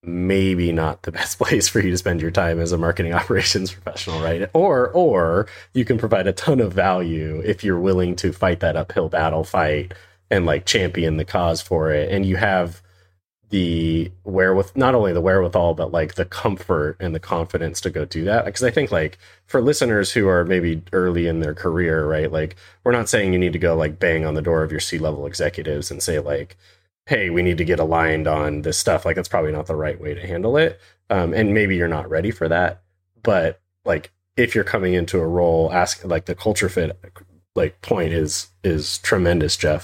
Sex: male